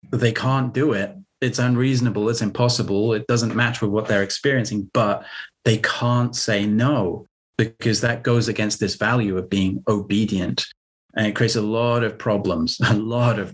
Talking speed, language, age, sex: 175 wpm, English, 30-49, male